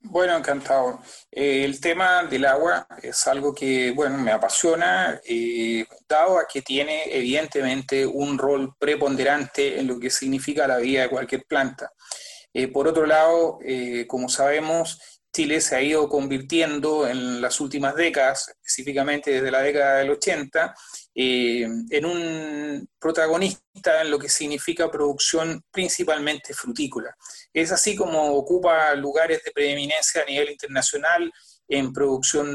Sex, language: male, Spanish